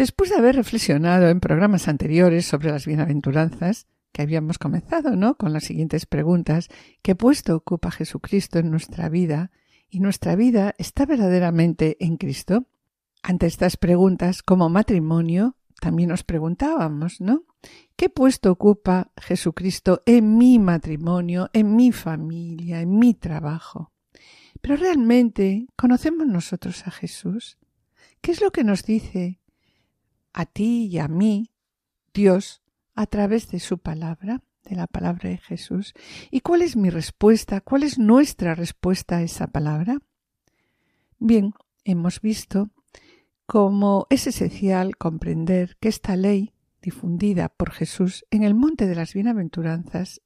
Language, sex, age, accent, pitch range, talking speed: Spanish, female, 60-79, Spanish, 170-220 Hz, 135 wpm